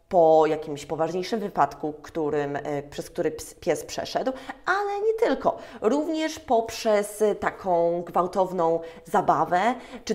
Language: Polish